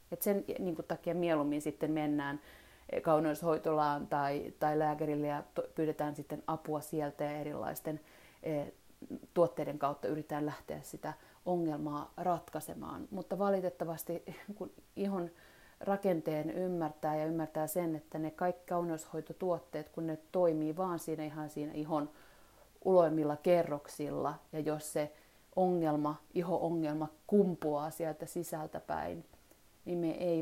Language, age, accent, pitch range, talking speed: Finnish, 30-49, native, 150-170 Hz, 120 wpm